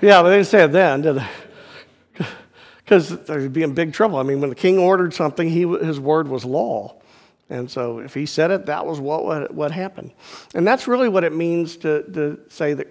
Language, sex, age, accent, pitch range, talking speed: English, male, 50-69, American, 145-180 Hz, 225 wpm